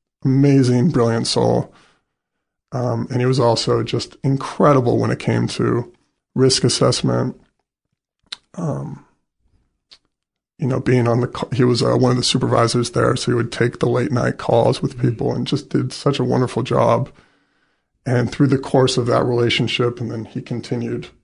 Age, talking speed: 20-39, 165 wpm